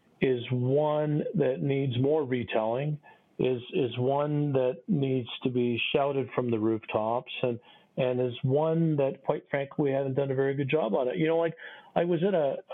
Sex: male